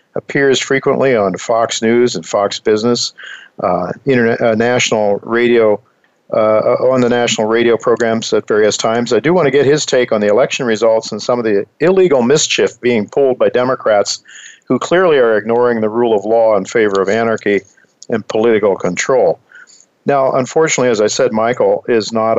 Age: 50-69